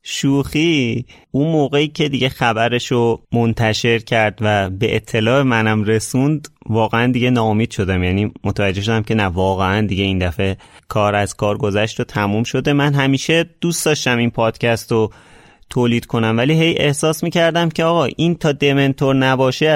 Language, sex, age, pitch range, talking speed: Persian, male, 30-49, 110-145 Hz, 155 wpm